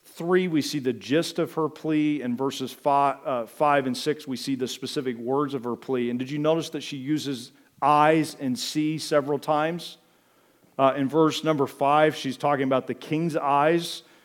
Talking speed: 190 wpm